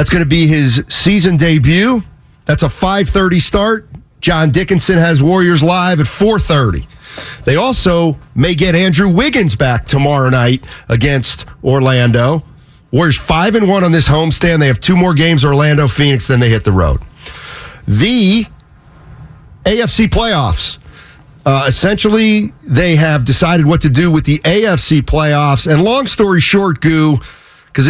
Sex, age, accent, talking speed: male, 40-59, American, 145 wpm